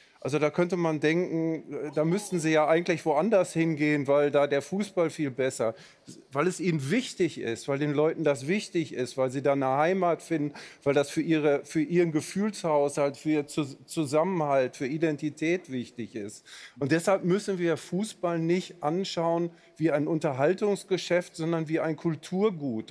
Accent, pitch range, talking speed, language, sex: German, 145-175 Hz, 165 wpm, German, male